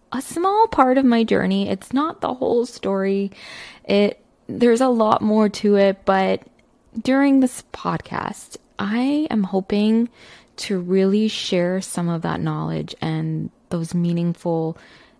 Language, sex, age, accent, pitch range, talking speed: English, female, 20-39, American, 180-220 Hz, 140 wpm